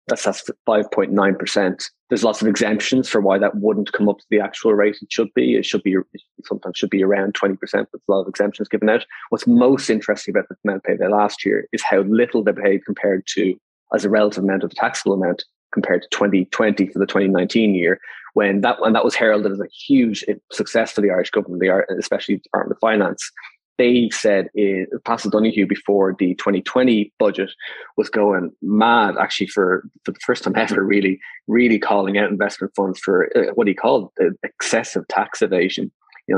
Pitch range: 95-110 Hz